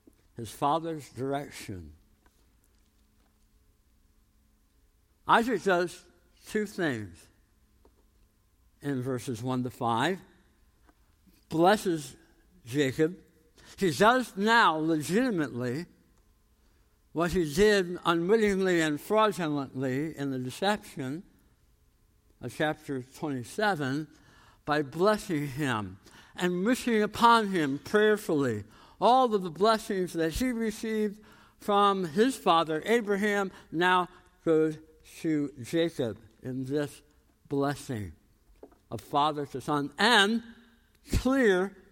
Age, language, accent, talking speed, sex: 60-79, English, American, 90 wpm, male